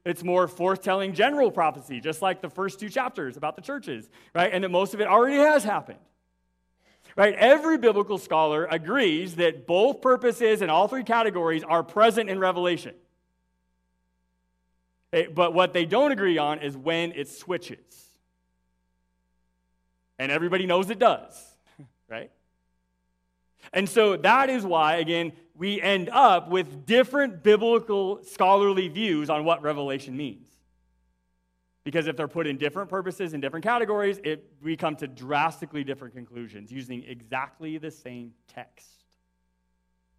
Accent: American